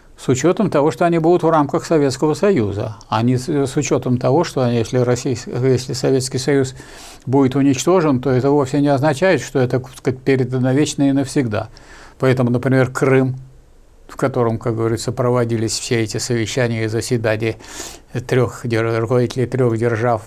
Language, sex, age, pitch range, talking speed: Russian, male, 60-79, 120-145 Hz, 160 wpm